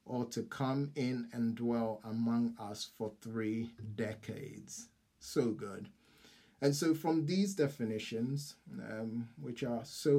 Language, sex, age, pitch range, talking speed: English, male, 30-49, 115-145 Hz, 130 wpm